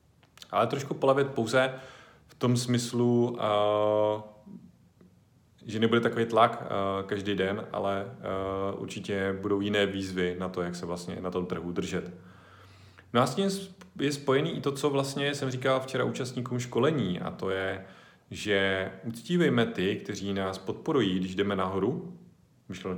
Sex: male